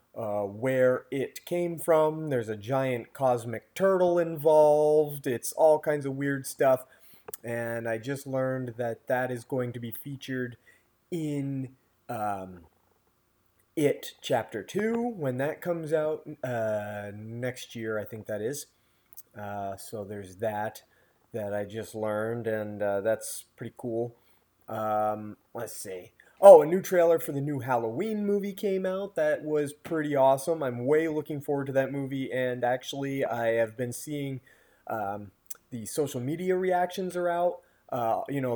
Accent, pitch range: American, 115-155 Hz